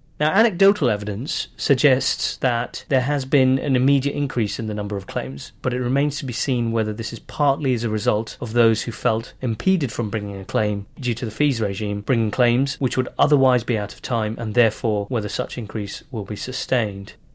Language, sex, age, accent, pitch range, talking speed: English, male, 30-49, British, 110-140 Hz, 210 wpm